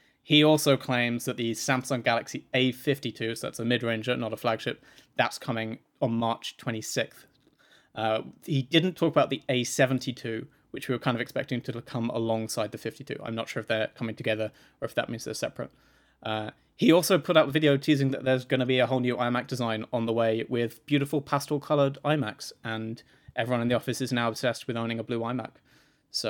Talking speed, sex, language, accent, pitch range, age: 205 wpm, male, English, British, 115-135 Hz, 20-39